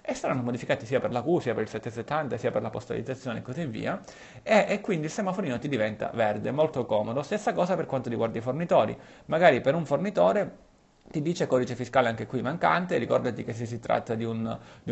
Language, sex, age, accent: Italian, male, 30-49, native